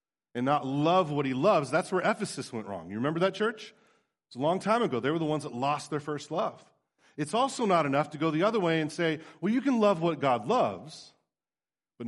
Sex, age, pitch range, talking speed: male, 40-59, 110-155 Hz, 240 wpm